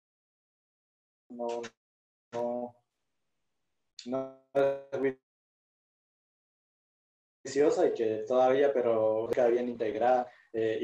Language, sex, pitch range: English, male, 115-140 Hz